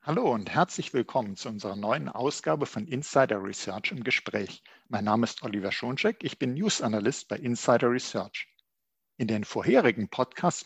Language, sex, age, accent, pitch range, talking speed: German, male, 50-69, German, 115-180 Hz, 165 wpm